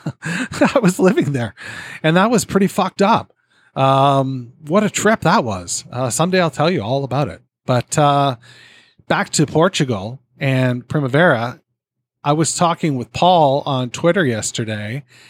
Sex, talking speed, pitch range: male, 155 wpm, 120-165 Hz